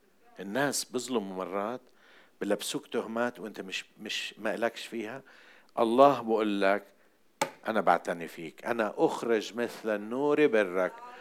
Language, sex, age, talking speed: Arabic, male, 60-79, 120 wpm